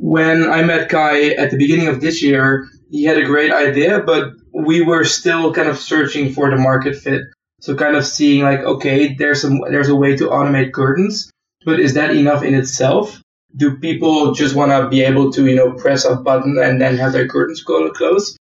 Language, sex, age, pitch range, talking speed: English, male, 20-39, 135-150 Hz, 210 wpm